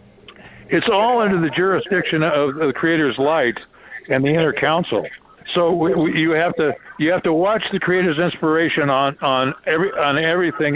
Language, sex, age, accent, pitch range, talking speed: English, male, 60-79, American, 135-170 Hz, 175 wpm